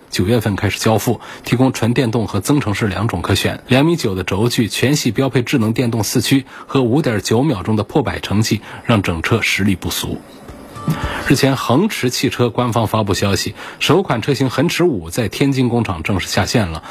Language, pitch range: Chinese, 100-130 Hz